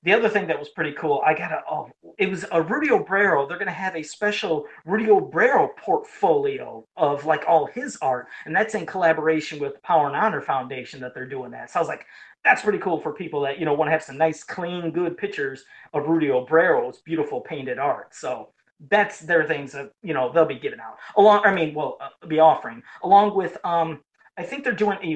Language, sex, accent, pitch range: English, male, American, 150-205 Hz